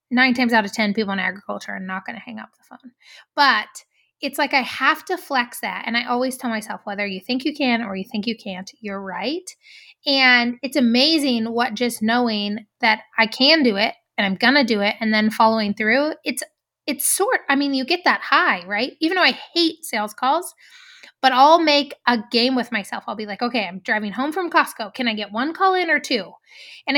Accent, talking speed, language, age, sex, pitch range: American, 230 wpm, English, 20-39, female, 215-275 Hz